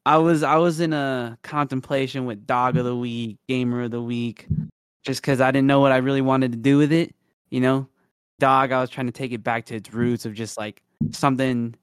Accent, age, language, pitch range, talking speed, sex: American, 20-39, English, 110-130 Hz, 235 wpm, male